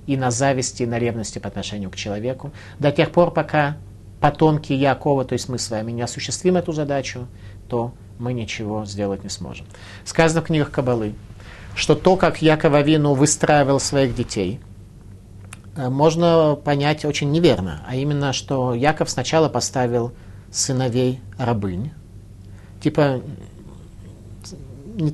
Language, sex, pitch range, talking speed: Russian, male, 105-145 Hz, 135 wpm